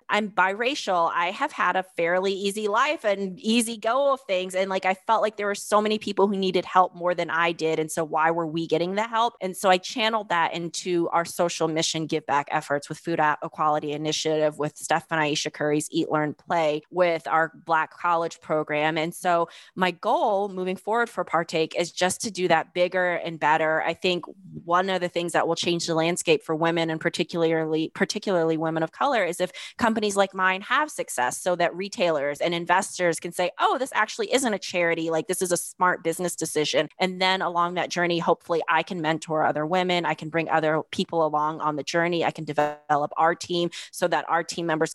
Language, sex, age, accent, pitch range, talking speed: English, female, 20-39, American, 160-185 Hz, 215 wpm